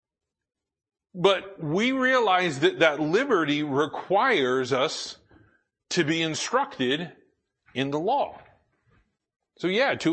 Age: 50-69